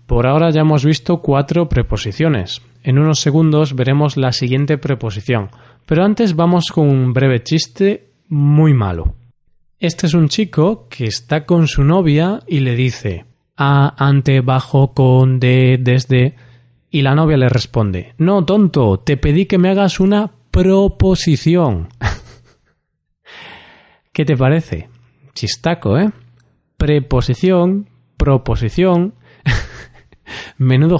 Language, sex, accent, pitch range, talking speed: Spanish, male, Spanish, 125-160 Hz, 120 wpm